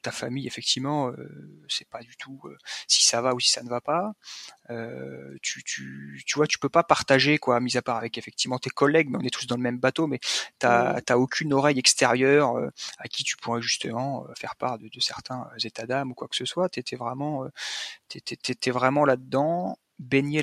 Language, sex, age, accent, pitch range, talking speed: French, male, 30-49, French, 120-140 Hz, 225 wpm